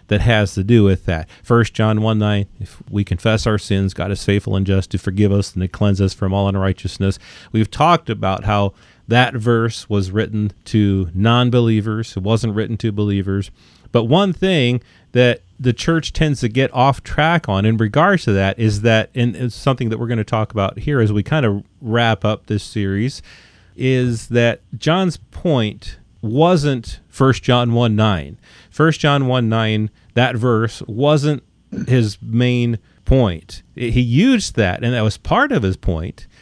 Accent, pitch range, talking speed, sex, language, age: American, 100-125 Hz, 180 wpm, male, English, 40-59